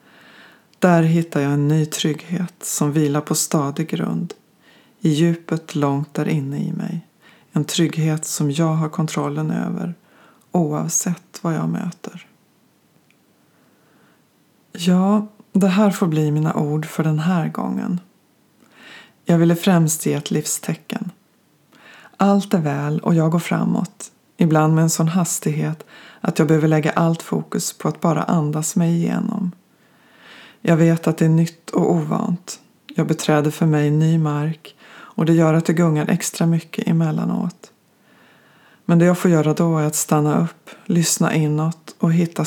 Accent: Swedish